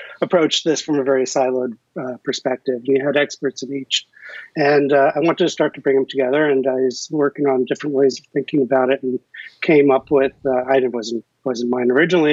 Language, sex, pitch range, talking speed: English, male, 130-150 Hz, 220 wpm